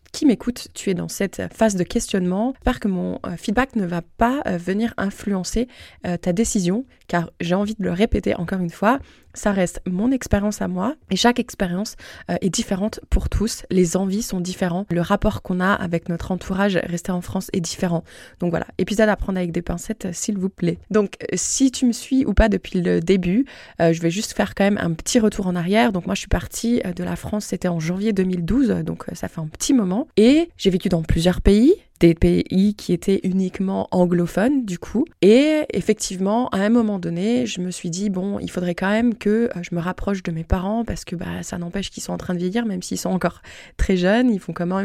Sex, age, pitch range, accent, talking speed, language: female, 20-39, 180-220 Hz, French, 220 wpm, French